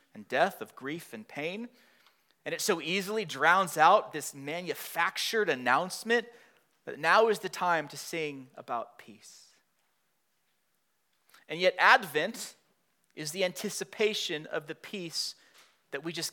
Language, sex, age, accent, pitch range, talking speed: English, male, 30-49, American, 165-215 Hz, 130 wpm